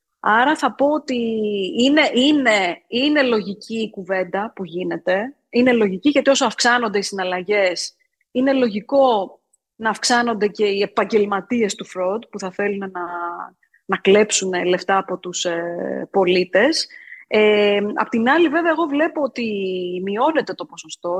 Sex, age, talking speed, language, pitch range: female, 20-39, 140 wpm, Greek, 190-245 Hz